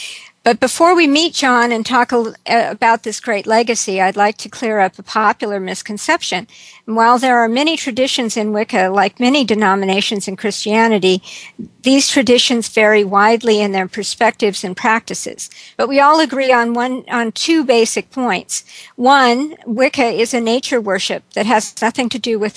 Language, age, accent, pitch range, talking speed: English, 50-69, American, 205-245 Hz, 175 wpm